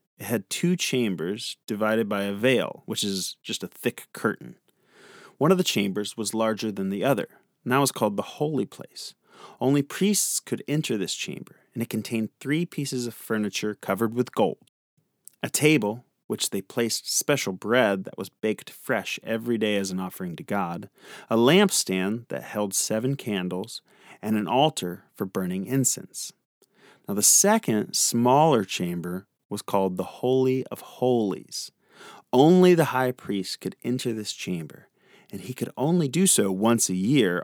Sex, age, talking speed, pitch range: male, 30-49, 165 wpm, 100-135 Hz